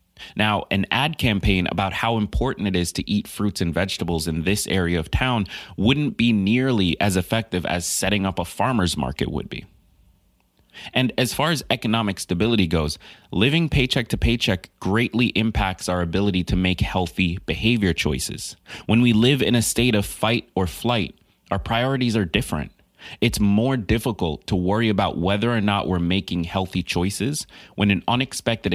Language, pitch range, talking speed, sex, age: English, 90-115 Hz, 170 wpm, male, 30-49